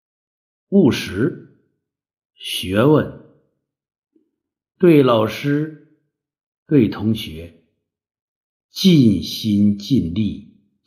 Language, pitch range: Chinese, 100-145 Hz